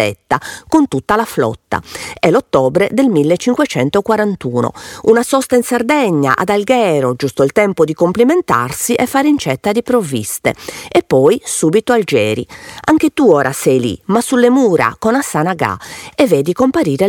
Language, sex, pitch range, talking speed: Italian, female, 150-250 Hz, 145 wpm